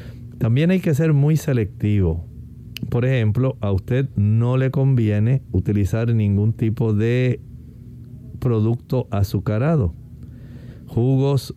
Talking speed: 105 wpm